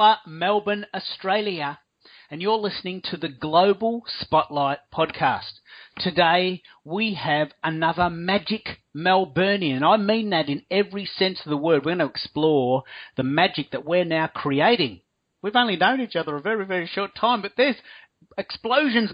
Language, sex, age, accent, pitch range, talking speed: English, male, 40-59, Australian, 140-200 Hz, 150 wpm